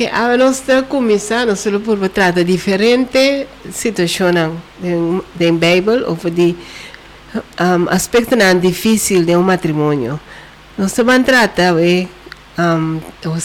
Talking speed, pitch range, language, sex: 125 wpm, 175-215 Hz, Dutch, female